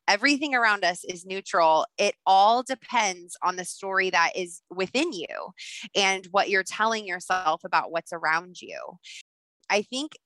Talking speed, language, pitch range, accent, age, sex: 150 wpm, English, 180-220 Hz, American, 20-39, female